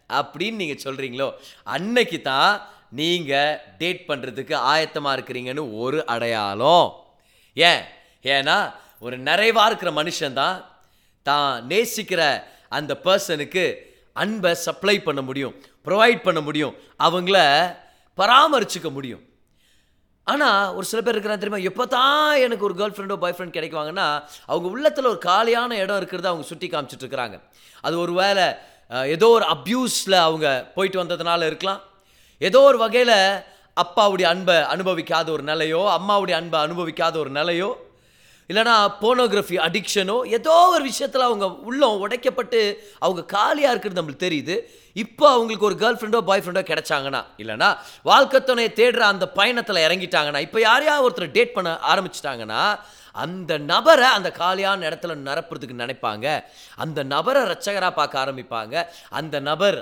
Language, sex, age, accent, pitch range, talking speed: Tamil, male, 30-49, native, 150-220 Hz, 130 wpm